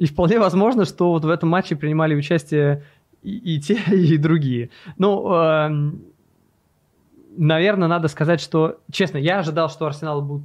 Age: 20-39